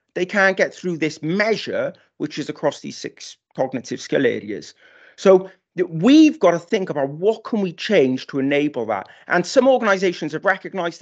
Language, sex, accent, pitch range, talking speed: English, male, British, 150-190 Hz, 175 wpm